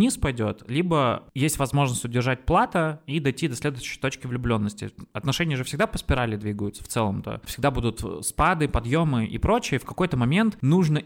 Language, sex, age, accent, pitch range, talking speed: Russian, male, 20-39, native, 115-160 Hz, 165 wpm